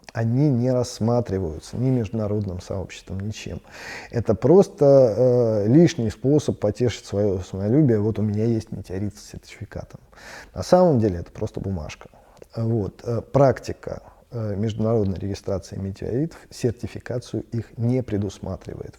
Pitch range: 100-145 Hz